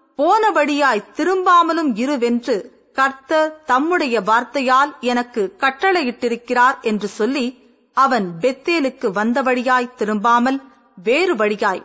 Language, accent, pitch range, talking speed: Tamil, native, 225-310 Hz, 85 wpm